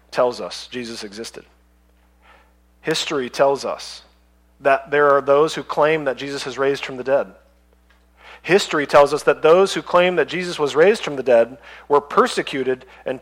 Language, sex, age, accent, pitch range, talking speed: English, male, 40-59, American, 125-190 Hz, 170 wpm